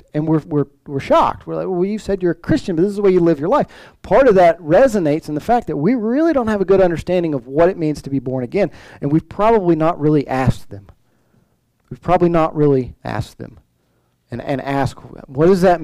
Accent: American